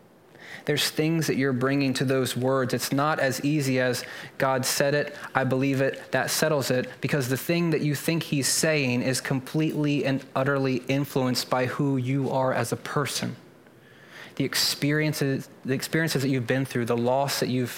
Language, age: English, 20-39